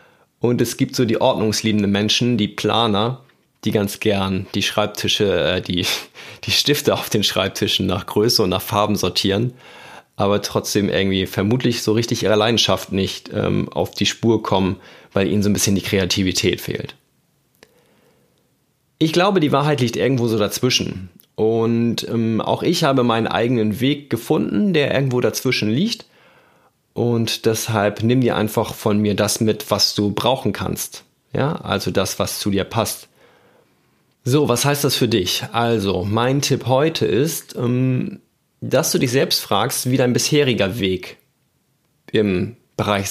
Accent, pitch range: German, 100-125 Hz